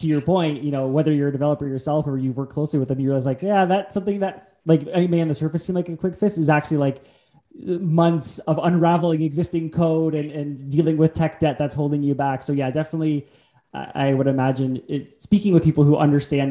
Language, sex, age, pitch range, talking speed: English, male, 20-39, 130-160 Hz, 230 wpm